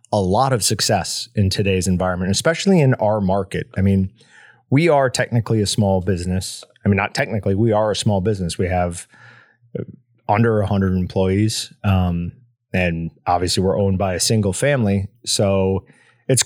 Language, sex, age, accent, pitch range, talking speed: English, male, 30-49, American, 95-125 Hz, 160 wpm